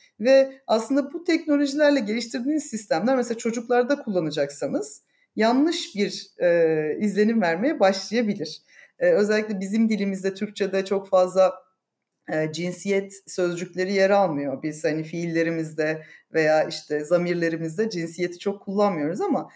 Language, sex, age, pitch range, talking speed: Turkish, female, 40-59, 175-235 Hz, 115 wpm